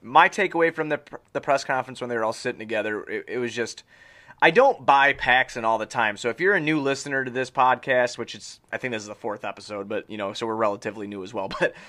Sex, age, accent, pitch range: male, 30-49, American, 110-130 Hz